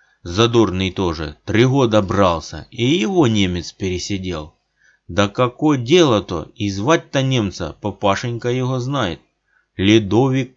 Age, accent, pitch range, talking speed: 30-49, native, 90-120 Hz, 115 wpm